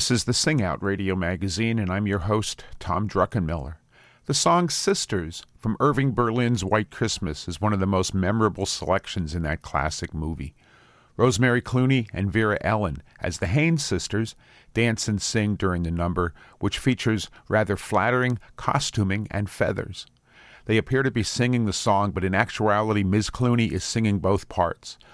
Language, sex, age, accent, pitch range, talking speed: English, male, 50-69, American, 95-120 Hz, 165 wpm